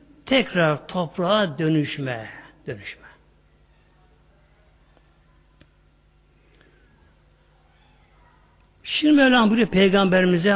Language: Turkish